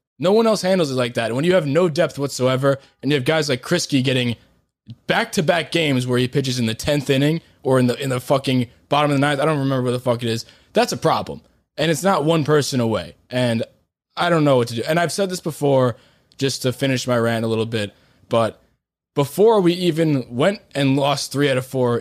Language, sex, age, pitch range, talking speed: English, male, 20-39, 125-165 Hz, 235 wpm